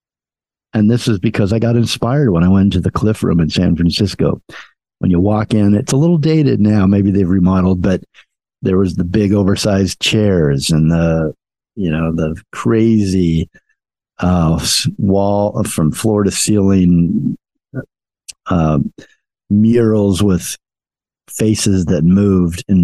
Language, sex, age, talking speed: English, male, 50-69, 145 wpm